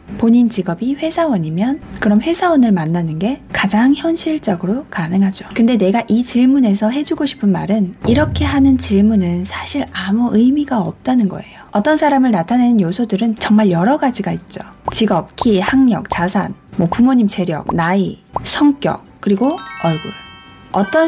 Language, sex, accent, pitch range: Korean, female, native, 195-260 Hz